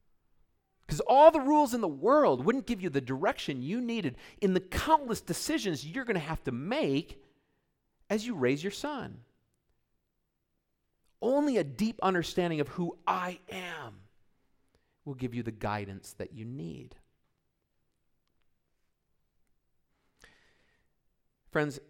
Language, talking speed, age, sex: English, 125 wpm, 40-59, male